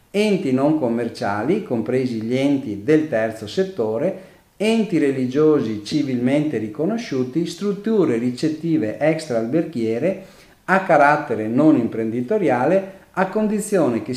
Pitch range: 115-180 Hz